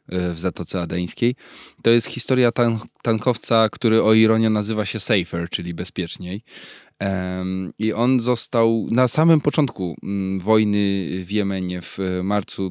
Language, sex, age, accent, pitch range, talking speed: Polish, male, 20-39, native, 95-120 Hz, 125 wpm